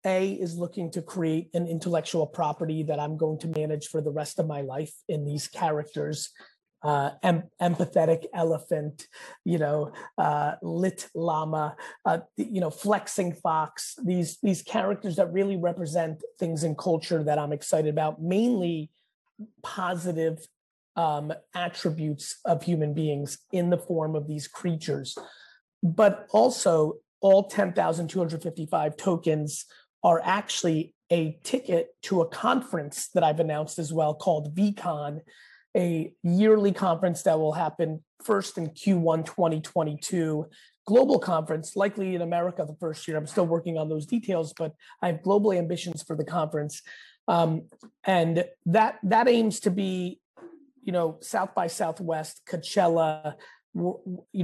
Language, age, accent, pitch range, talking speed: English, 30-49, American, 155-190 Hz, 145 wpm